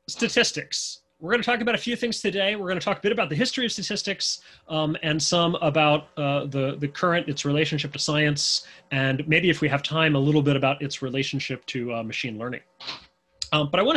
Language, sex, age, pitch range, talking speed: English, male, 30-49, 135-180 Hz, 230 wpm